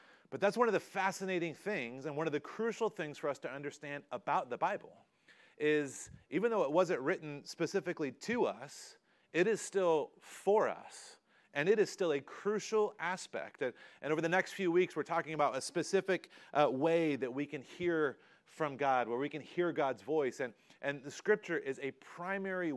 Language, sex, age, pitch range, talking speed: English, male, 30-49, 145-185 Hz, 195 wpm